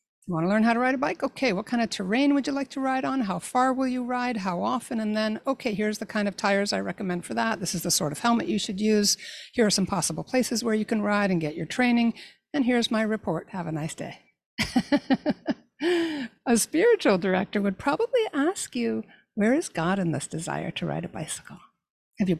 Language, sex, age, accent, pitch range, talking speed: English, female, 60-79, American, 190-250 Hz, 235 wpm